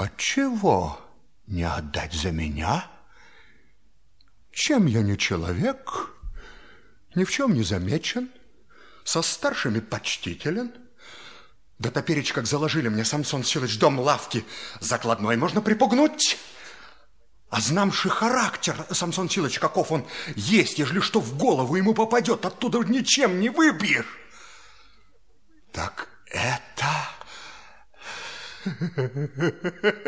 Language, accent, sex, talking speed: Russian, native, male, 100 wpm